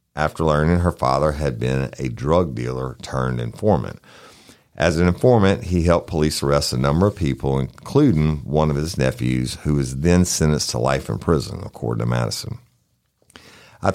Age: 50-69